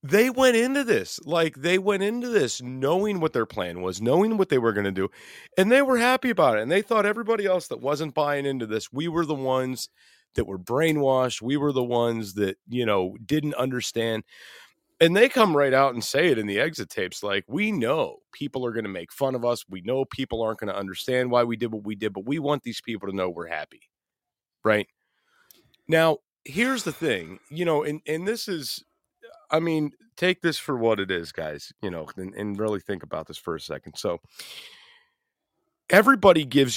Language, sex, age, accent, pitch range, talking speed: English, male, 30-49, American, 115-180 Hz, 215 wpm